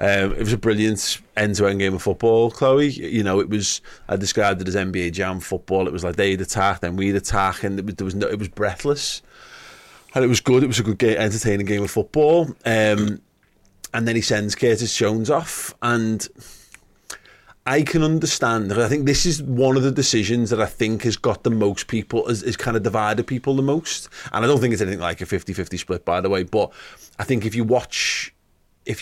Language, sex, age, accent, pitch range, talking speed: English, male, 30-49, British, 100-120 Hz, 220 wpm